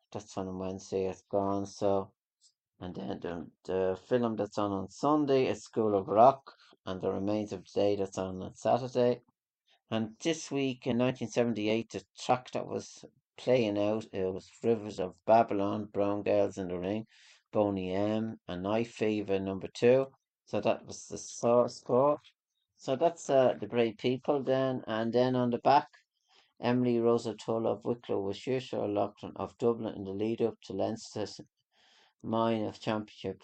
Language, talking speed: English, 165 wpm